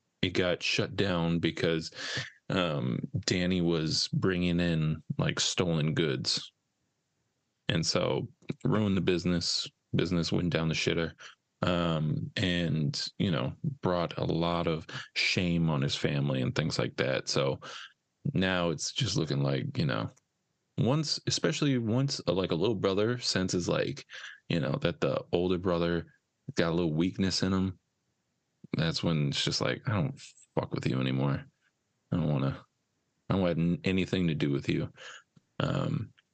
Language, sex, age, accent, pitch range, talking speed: English, male, 20-39, American, 85-125 Hz, 150 wpm